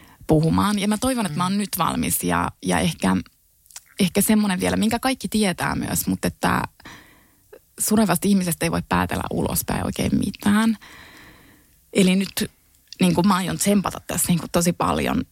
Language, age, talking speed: Finnish, 20-39, 160 wpm